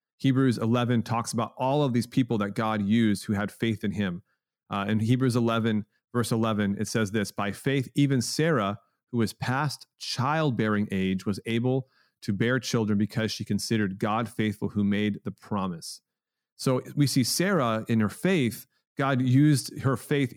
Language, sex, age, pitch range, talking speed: English, male, 30-49, 105-130 Hz, 175 wpm